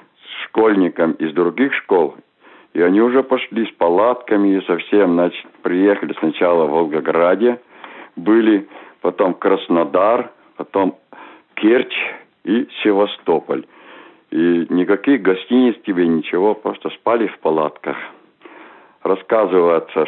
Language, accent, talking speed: Russian, native, 100 wpm